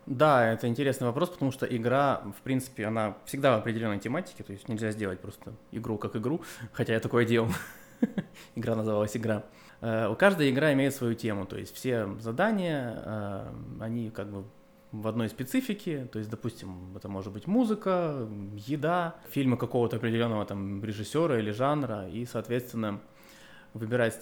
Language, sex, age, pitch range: Russian, male, 20-39, 105-130 Hz